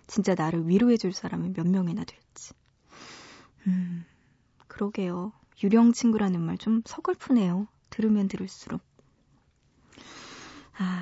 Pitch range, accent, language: 185-230 Hz, native, Korean